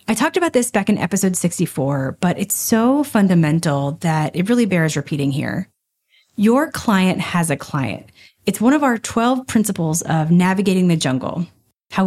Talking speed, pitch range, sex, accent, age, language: 170 wpm, 170-220 Hz, female, American, 30-49, English